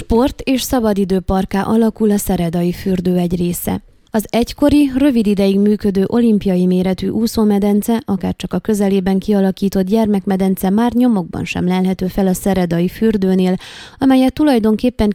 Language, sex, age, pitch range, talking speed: Hungarian, female, 20-39, 185-225 Hz, 130 wpm